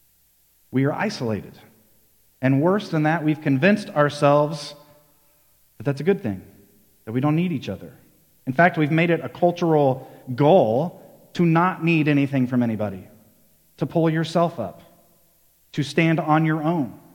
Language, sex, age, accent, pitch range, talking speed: English, male, 40-59, American, 120-170 Hz, 155 wpm